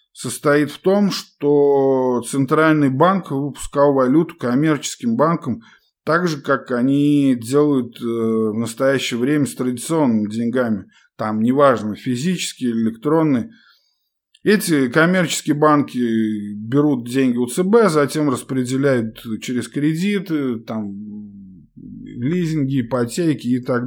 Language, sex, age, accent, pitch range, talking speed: Russian, male, 20-39, native, 125-170 Hz, 100 wpm